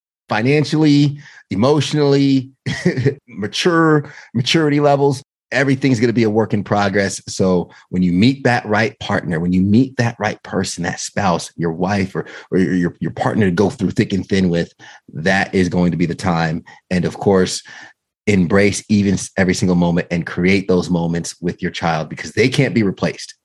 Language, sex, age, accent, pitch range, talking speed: English, male, 30-49, American, 95-120 Hz, 175 wpm